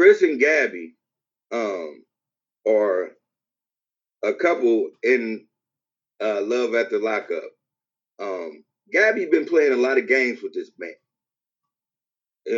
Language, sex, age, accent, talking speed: English, male, 30-49, American, 120 wpm